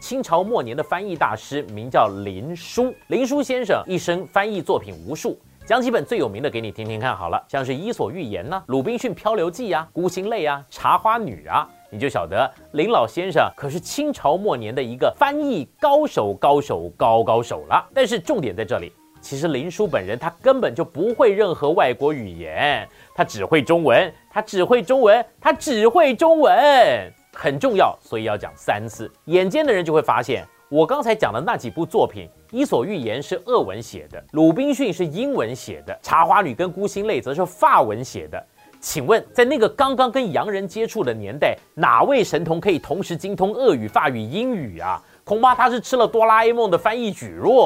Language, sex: Chinese, male